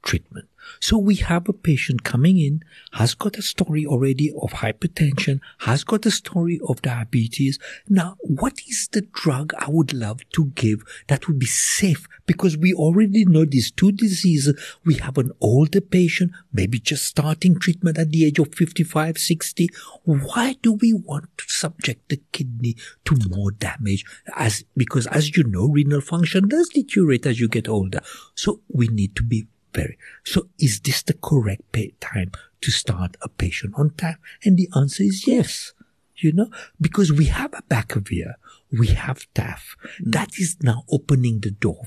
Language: English